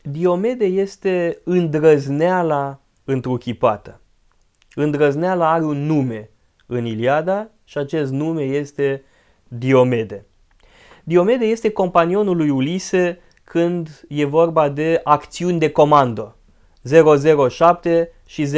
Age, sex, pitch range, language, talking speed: 20-39, male, 135-180 Hz, Romanian, 95 wpm